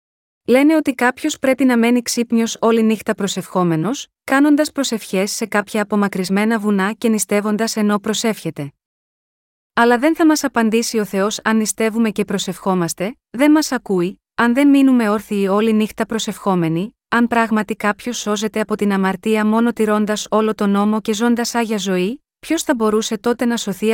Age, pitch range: 30-49, 200-240 Hz